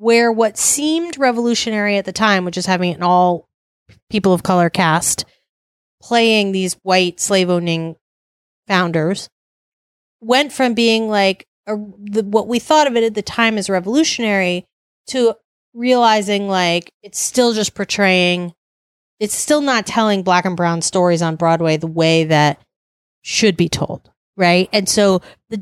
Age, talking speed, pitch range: 30-49, 150 wpm, 175-230 Hz